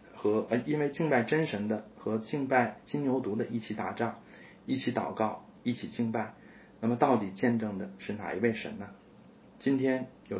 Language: Chinese